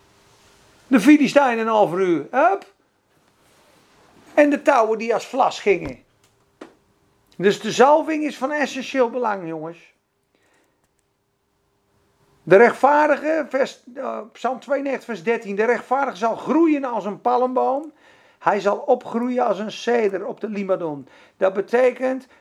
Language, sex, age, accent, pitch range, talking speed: Dutch, male, 50-69, Dutch, 195-250 Hz, 130 wpm